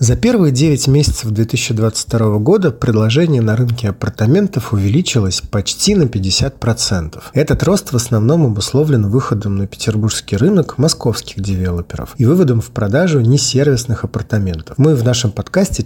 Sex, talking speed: male, 130 wpm